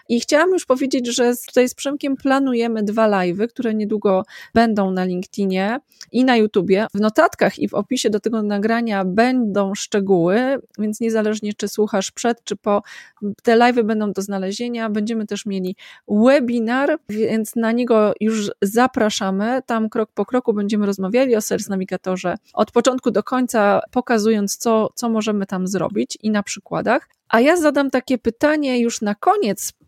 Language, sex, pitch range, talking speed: Polish, female, 205-255 Hz, 160 wpm